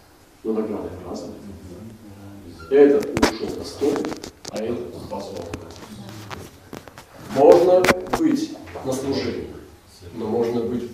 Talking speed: 90 wpm